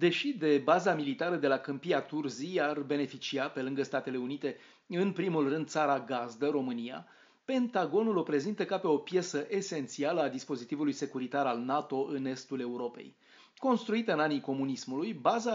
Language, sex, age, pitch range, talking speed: Romanian, male, 30-49, 135-185 Hz, 160 wpm